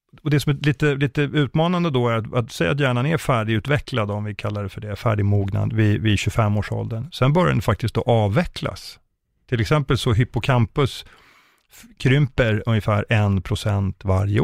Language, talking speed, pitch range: Swedish, 165 wpm, 105-130 Hz